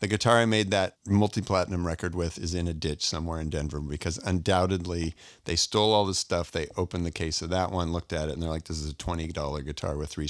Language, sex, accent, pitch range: English, male, American, 85-110 Hz